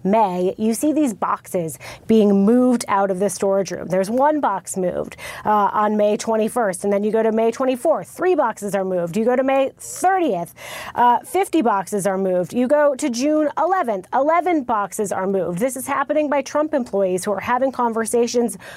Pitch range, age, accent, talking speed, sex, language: 195-245 Hz, 30-49, American, 190 wpm, female, English